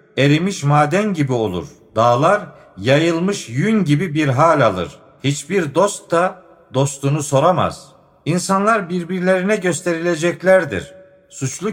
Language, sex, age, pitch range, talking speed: Turkish, male, 50-69, 140-185 Hz, 100 wpm